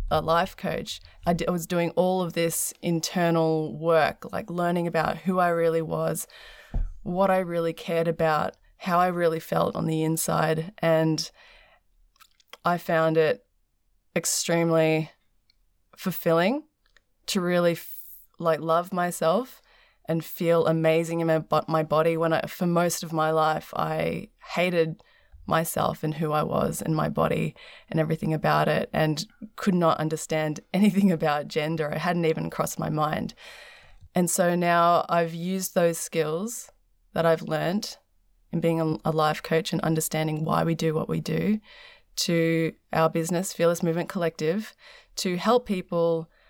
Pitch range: 160-175 Hz